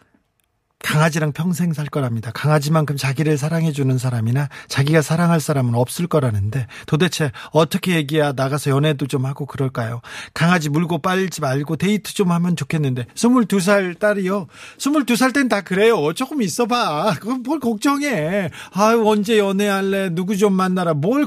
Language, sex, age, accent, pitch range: Korean, male, 40-59, native, 145-205 Hz